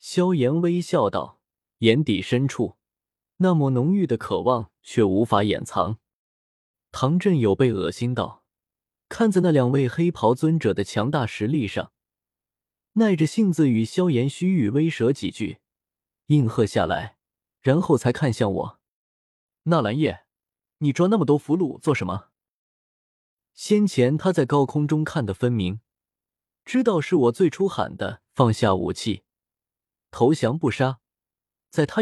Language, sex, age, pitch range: Chinese, male, 20-39, 110-165 Hz